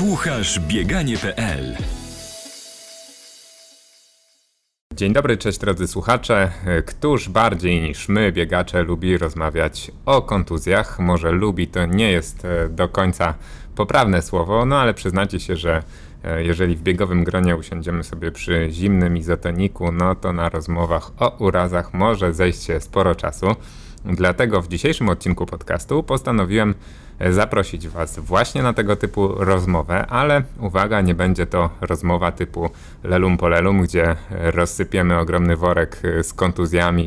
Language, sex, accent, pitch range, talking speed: Polish, male, native, 85-100 Hz, 125 wpm